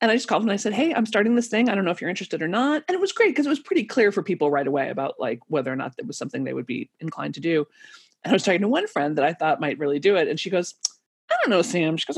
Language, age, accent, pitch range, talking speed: English, 30-49, American, 175-255 Hz, 345 wpm